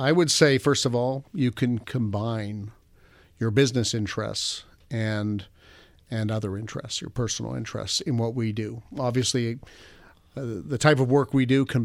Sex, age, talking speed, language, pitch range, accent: male, 50-69, 160 wpm, English, 105-130 Hz, American